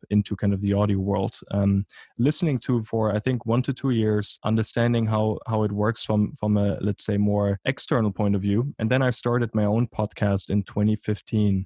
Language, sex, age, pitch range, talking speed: English, male, 20-39, 100-110 Hz, 205 wpm